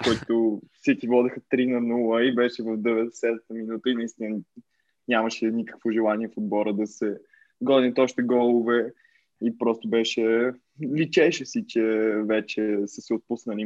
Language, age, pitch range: Bulgarian, 20-39, 115-125 Hz